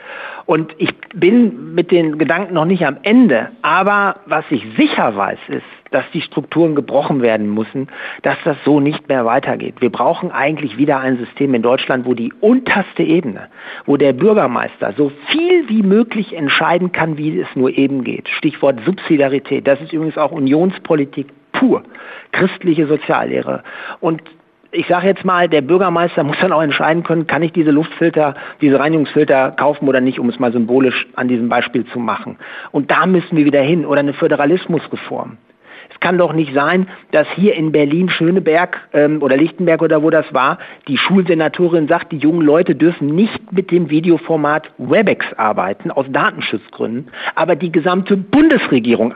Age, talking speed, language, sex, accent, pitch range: 50-69, 170 wpm, German, male, German, 140-185 Hz